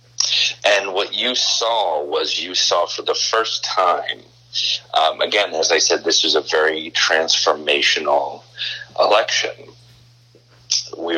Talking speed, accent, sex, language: 125 wpm, American, male, English